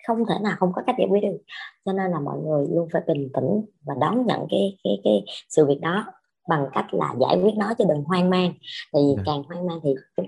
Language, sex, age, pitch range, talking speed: Vietnamese, male, 20-39, 150-210 Hz, 250 wpm